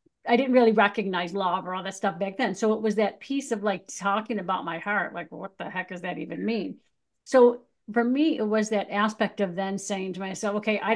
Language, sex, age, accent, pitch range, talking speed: English, female, 50-69, American, 195-230 Hz, 240 wpm